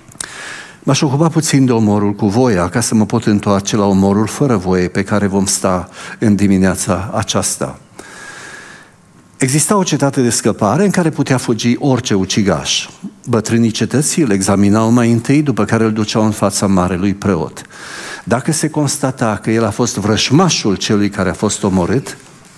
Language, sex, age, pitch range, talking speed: Romanian, male, 50-69, 105-140 Hz, 160 wpm